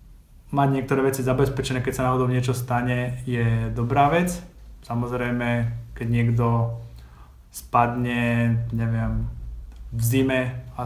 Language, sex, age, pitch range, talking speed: Slovak, male, 20-39, 120-135 Hz, 110 wpm